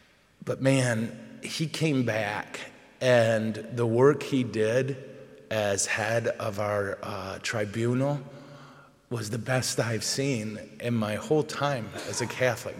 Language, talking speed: English, 130 wpm